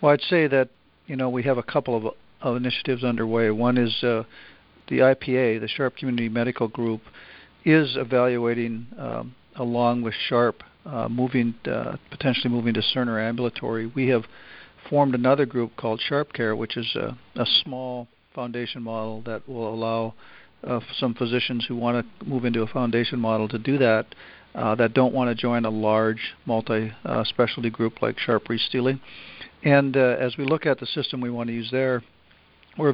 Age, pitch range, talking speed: 50-69, 115-125 Hz, 180 wpm